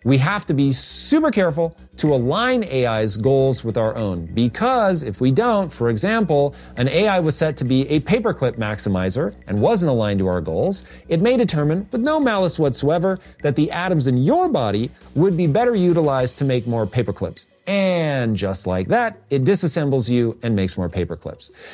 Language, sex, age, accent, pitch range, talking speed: English, male, 40-59, American, 115-175 Hz, 180 wpm